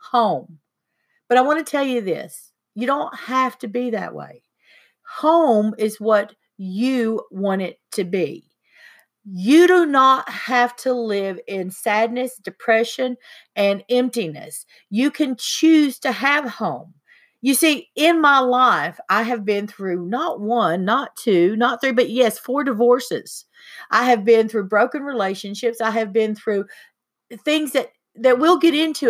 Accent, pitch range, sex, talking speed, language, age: American, 210-265 Hz, female, 155 wpm, English, 50-69